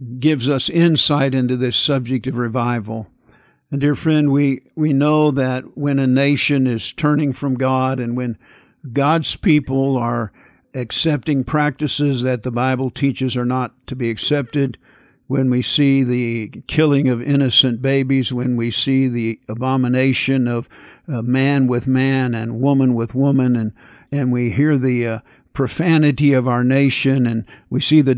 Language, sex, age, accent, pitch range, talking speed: English, male, 50-69, American, 125-140 Hz, 160 wpm